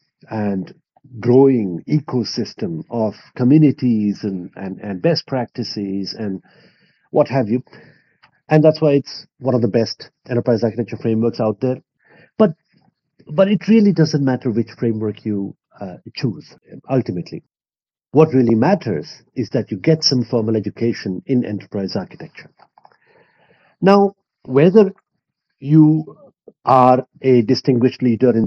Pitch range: 110-150 Hz